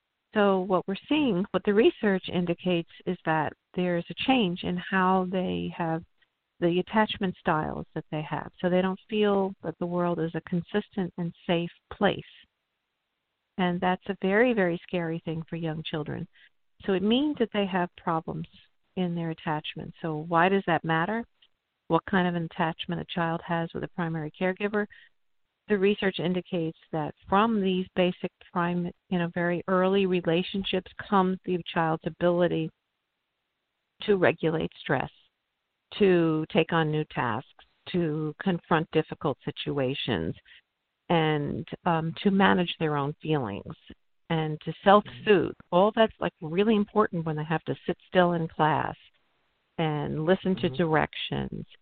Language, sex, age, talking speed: English, female, 50-69, 150 wpm